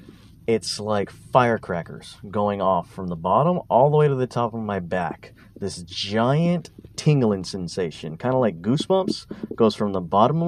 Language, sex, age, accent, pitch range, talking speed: English, male, 30-49, American, 105-155 Hz, 170 wpm